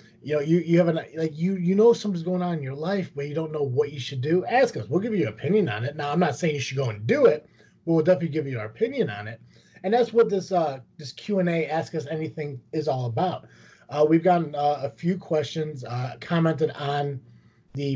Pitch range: 120-170 Hz